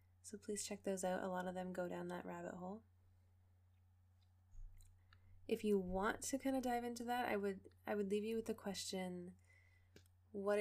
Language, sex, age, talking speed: English, female, 20-39, 185 wpm